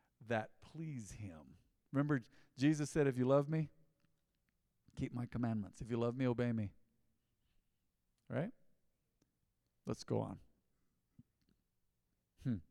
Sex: male